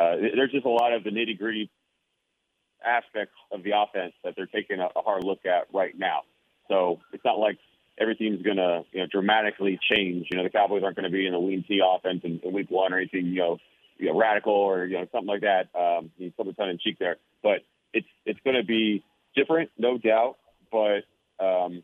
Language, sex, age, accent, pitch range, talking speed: English, male, 40-59, American, 95-110 Hz, 225 wpm